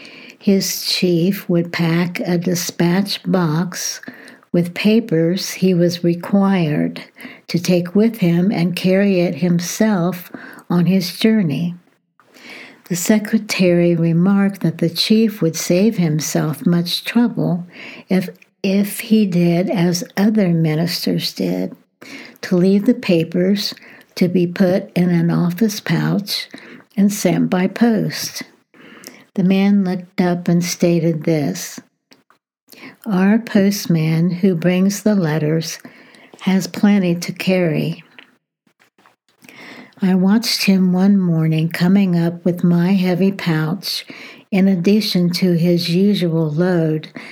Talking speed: 115 wpm